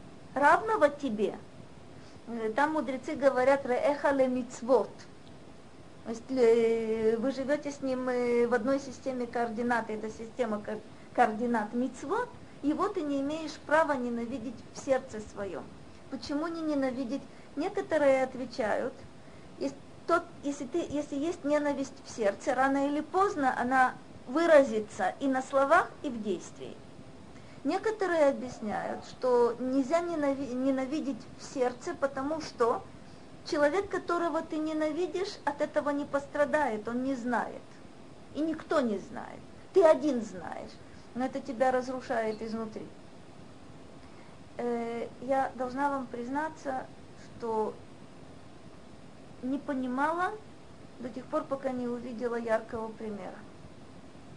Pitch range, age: 245-295 Hz, 40-59